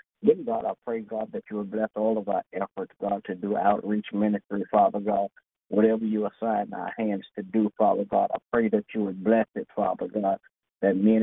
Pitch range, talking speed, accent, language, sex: 100-110 Hz, 215 wpm, American, English, male